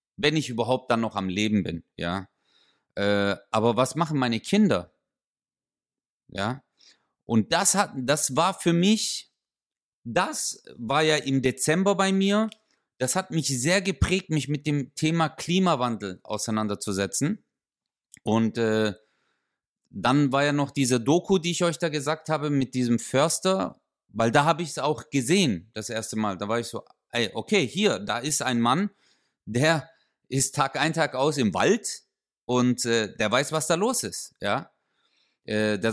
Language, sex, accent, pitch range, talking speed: German, male, German, 120-170 Hz, 165 wpm